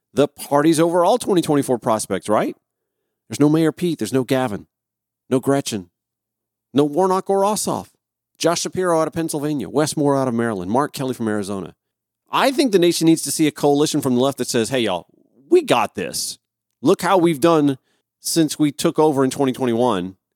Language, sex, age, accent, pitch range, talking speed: English, male, 40-59, American, 120-170 Hz, 185 wpm